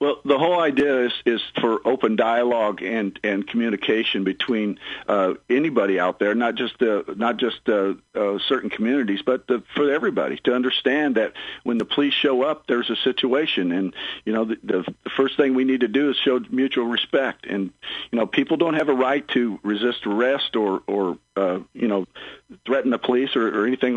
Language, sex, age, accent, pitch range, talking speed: English, male, 50-69, American, 115-135 Hz, 200 wpm